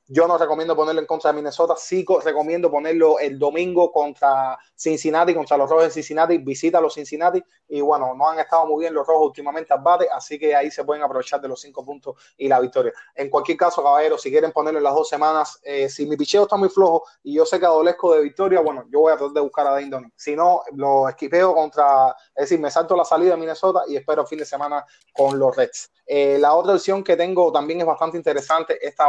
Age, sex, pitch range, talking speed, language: 30-49, male, 145-170 Hz, 235 wpm, Spanish